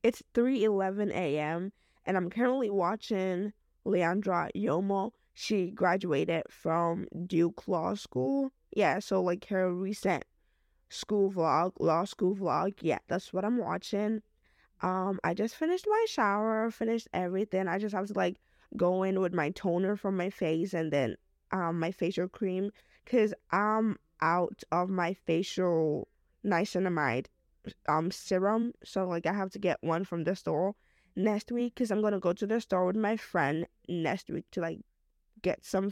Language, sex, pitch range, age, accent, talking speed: English, female, 170-215 Hz, 10-29, American, 155 wpm